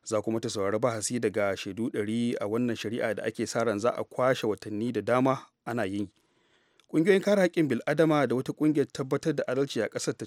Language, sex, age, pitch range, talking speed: English, male, 30-49, 110-130 Hz, 180 wpm